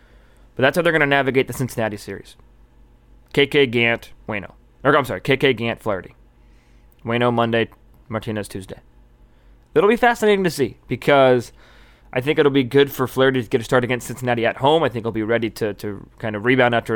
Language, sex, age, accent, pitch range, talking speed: English, male, 20-39, American, 110-150 Hz, 195 wpm